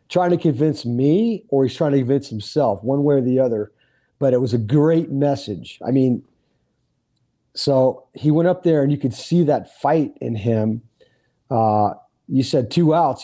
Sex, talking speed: male, 185 wpm